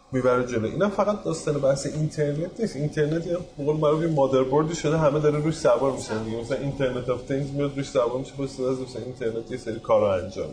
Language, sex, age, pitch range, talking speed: Persian, male, 30-49, 130-175 Hz, 190 wpm